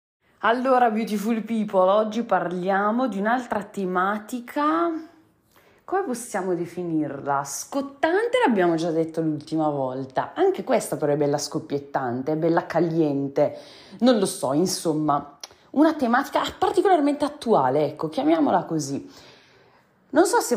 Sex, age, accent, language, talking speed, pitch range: female, 30-49, native, Italian, 115 wpm, 155-245 Hz